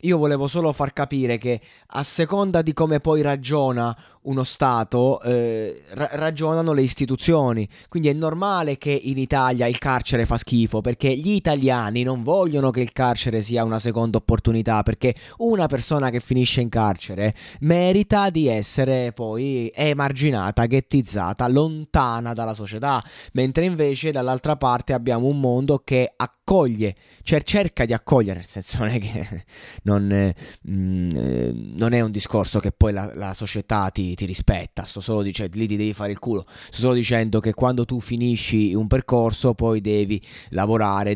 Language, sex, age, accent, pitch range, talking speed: Italian, male, 20-39, native, 105-135 Hz, 155 wpm